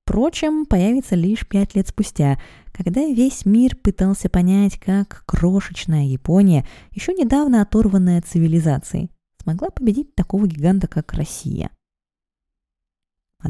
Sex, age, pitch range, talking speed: female, 20-39, 150-215 Hz, 110 wpm